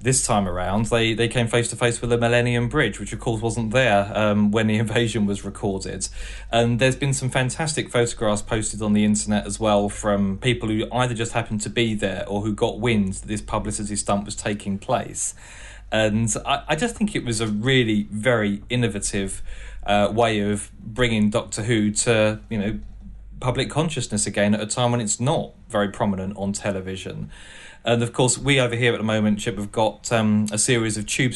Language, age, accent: English, 30-49, British